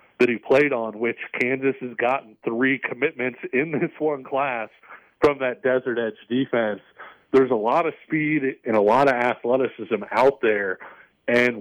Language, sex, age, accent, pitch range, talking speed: English, male, 40-59, American, 115-135 Hz, 165 wpm